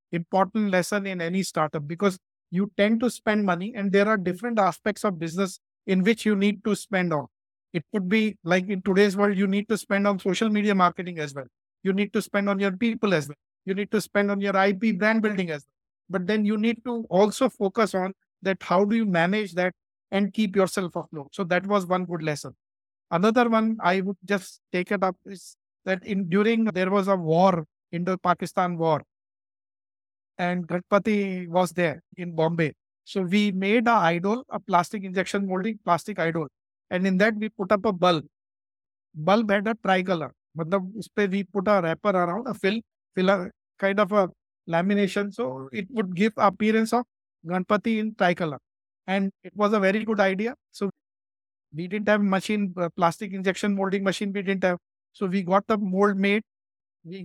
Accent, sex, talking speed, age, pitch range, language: Indian, male, 190 wpm, 50-69, 175-210 Hz, English